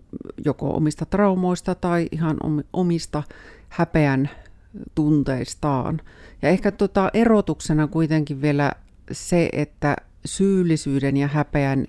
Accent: native